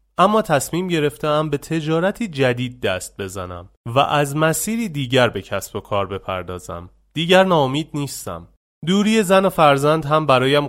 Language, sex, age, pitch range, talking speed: Persian, male, 30-49, 110-150 Hz, 145 wpm